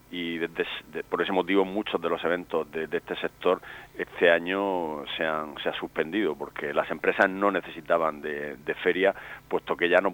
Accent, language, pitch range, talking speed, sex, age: Spanish, Spanish, 80-95 Hz, 180 wpm, male, 40-59